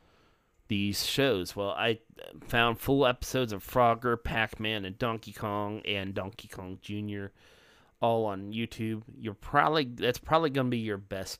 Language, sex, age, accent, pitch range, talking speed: English, male, 30-49, American, 95-120 Hz, 145 wpm